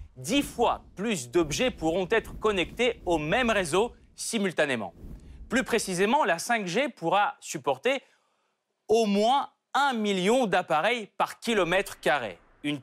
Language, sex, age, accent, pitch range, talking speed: French, male, 30-49, French, 155-230 Hz, 120 wpm